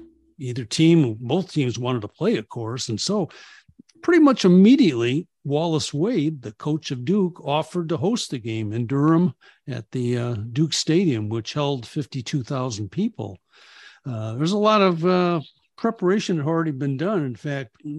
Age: 60-79